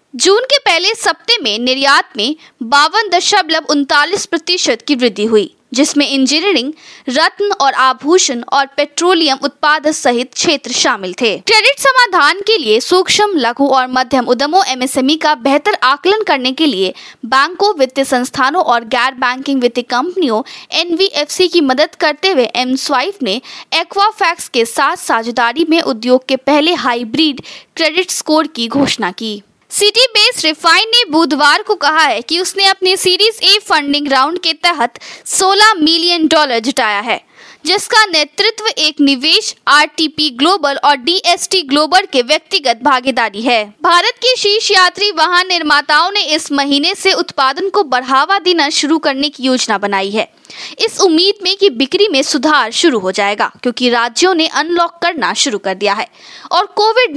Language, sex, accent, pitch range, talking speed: Hindi, female, native, 260-370 Hz, 155 wpm